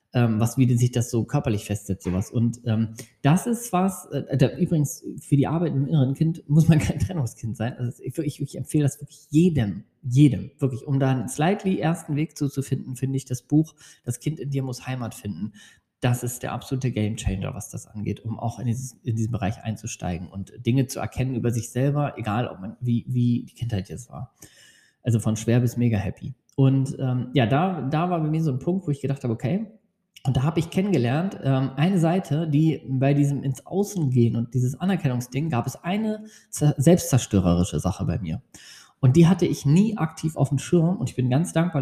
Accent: German